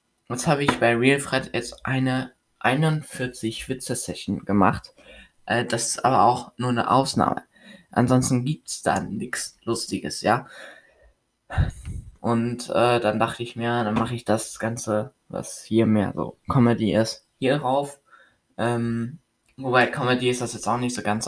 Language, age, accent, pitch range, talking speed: German, 20-39, German, 110-130 Hz, 150 wpm